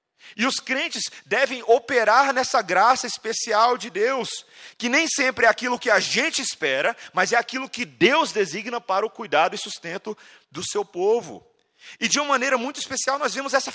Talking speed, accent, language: 185 wpm, Brazilian, Portuguese